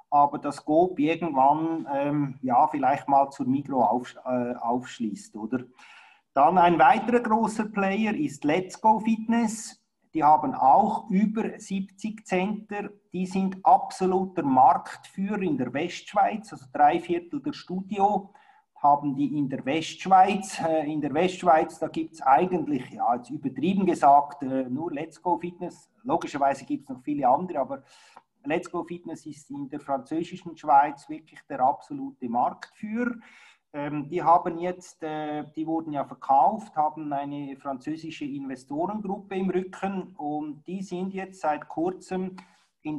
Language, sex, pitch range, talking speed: German, male, 145-210 Hz, 140 wpm